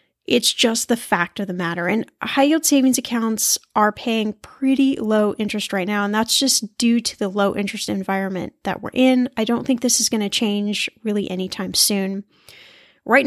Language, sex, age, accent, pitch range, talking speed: English, female, 10-29, American, 210-265 Hz, 195 wpm